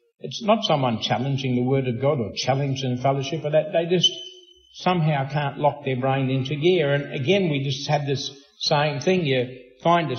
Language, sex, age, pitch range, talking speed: English, male, 60-79, 125-155 Hz, 195 wpm